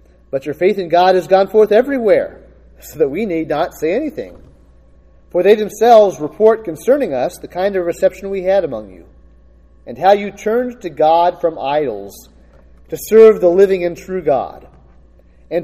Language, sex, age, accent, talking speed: English, male, 40-59, American, 175 wpm